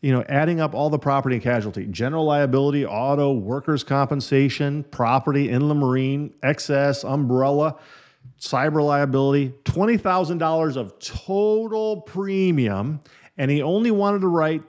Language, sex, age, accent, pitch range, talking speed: English, male, 40-59, American, 120-155 Hz, 125 wpm